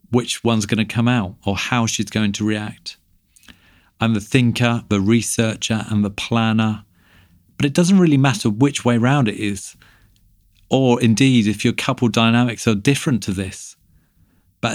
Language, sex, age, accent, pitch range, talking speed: English, male, 40-59, British, 100-120 Hz, 165 wpm